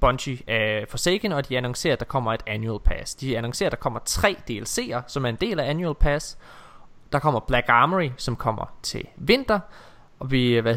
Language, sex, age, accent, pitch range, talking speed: Danish, male, 20-39, native, 120-160 Hz, 205 wpm